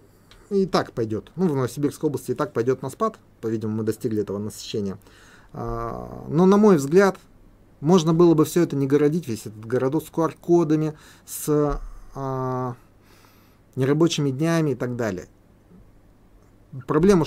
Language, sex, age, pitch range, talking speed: Russian, male, 30-49, 105-150 Hz, 140 wpm